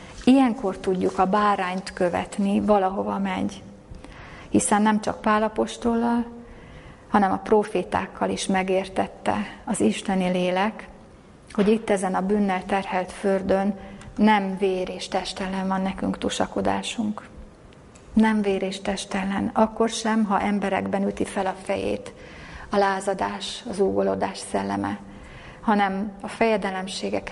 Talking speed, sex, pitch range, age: 115 wpm, female, 190-210 Hz, 30-49